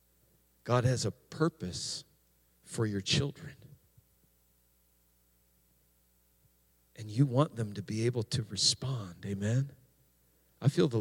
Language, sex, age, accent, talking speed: English, male, 40-59, American, 110 wpm